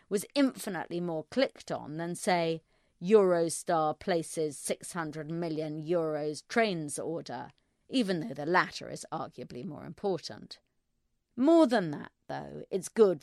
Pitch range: 155-200 Hz